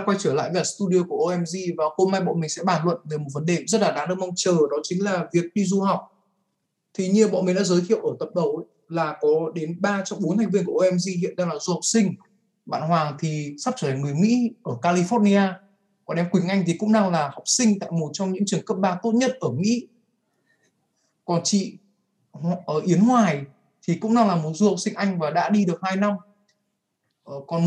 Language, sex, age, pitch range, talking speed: Vietnamese, male, 20-39, 155-200 Hz, 240 wpm